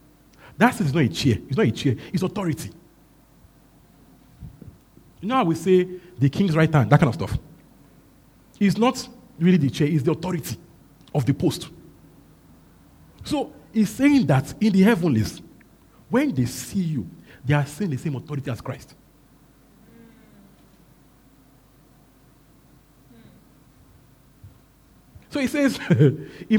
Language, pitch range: English, 135-205 Hz